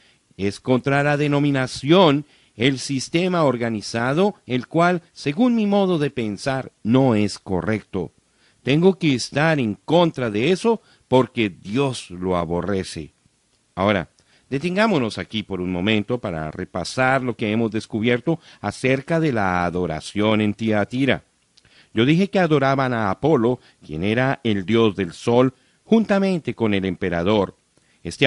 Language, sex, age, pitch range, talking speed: Spanish, male, 50-69, 110-150 Hz, 135 wpm